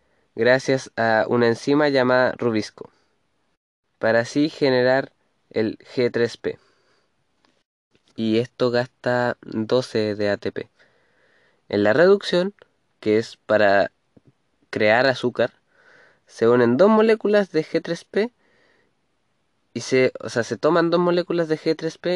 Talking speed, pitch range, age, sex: 110 wpm, 115-155 Hz, 20-39, male